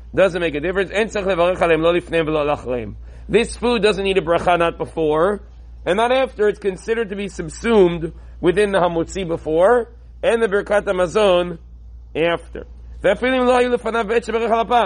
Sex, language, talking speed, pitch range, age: male, English, 120 wpm, 160-230 Hz, 40-59